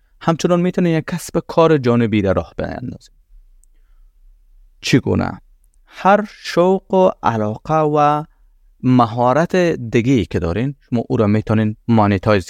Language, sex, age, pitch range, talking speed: Persian, male, 30-49, 95-130 Hz, 115 wpm